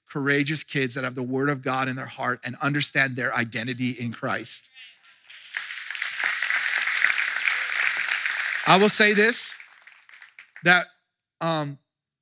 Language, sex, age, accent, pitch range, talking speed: English, male, 40-59, American, 130-155 Hz, 115 wpm